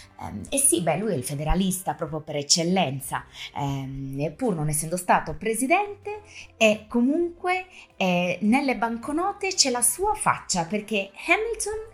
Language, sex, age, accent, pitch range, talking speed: Italian, female, 20-39, native, 150-225 Hz, 125 wpm